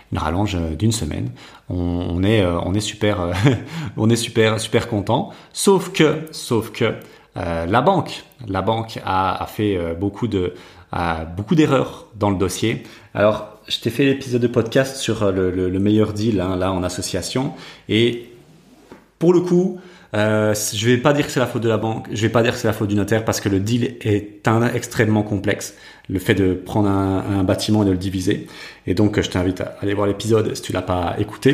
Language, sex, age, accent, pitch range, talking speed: French, male, 30-49, French, 95-120 Hz, 205 wpm